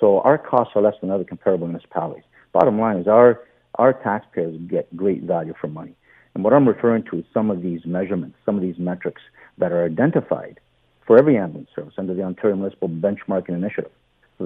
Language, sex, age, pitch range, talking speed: English, male, 50-69, 95-115 Hz, 200 wpm